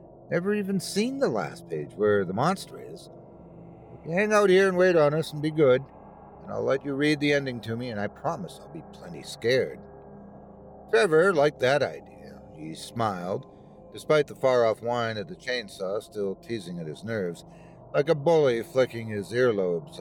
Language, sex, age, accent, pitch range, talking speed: English, male, 50-69, American, 105-150 Hz, 185 wpm